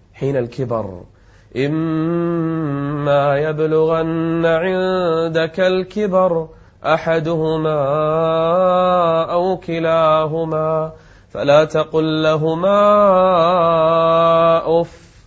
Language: Arabic